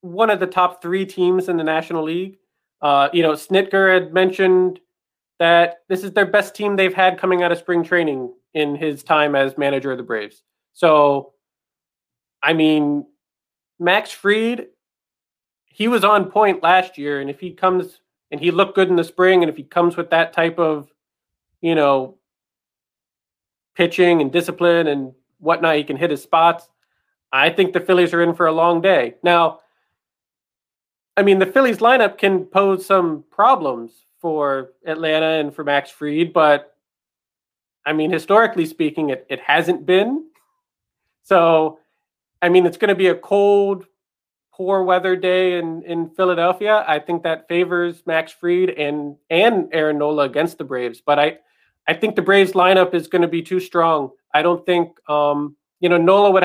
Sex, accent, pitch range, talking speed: male, American, 150-185 Hz, 175 wpm